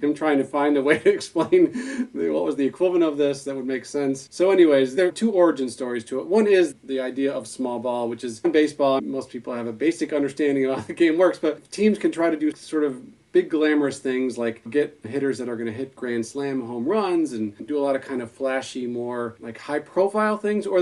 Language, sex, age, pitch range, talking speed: English, male, 40-59, 120-155 Hz, 250 wpm